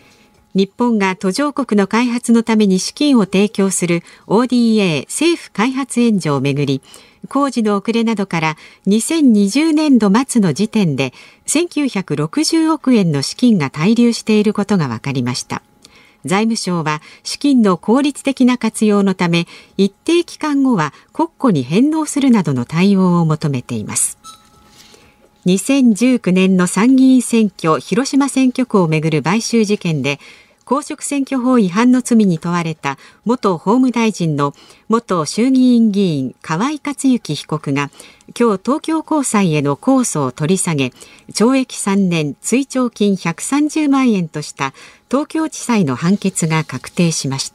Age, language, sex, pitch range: 50-69, Japanese, female, 170-255 Hz